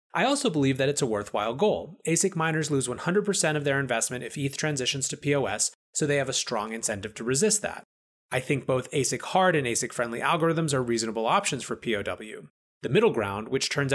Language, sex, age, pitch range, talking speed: English, male, 30-49, 120-155 Hz, 205 wpm